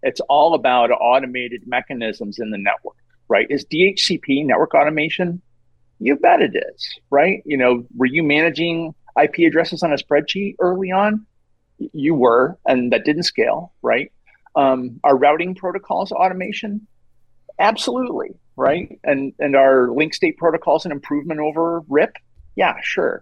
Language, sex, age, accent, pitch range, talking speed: English, male, 40-59, American, 125-165 Hz, 145 wpm